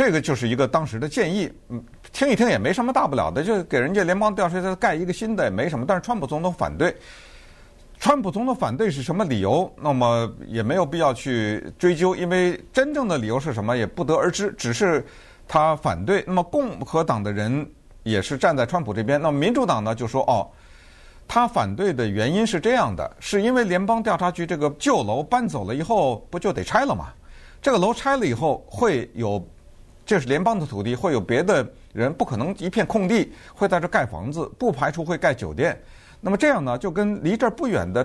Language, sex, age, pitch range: Chinese, male, 50-69, 120-195 Hz